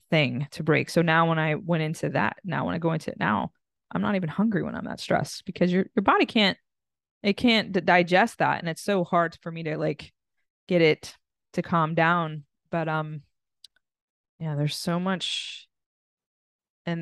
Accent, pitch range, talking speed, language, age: American, 155-180 Hz, 190 wpm, English, 20-39